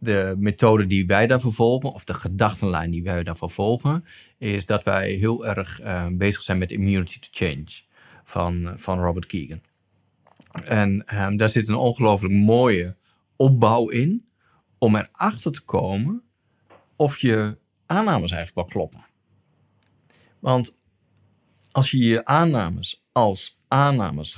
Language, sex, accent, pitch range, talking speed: Dutch, male, Dutch, 90-115 Hz, 135 wpm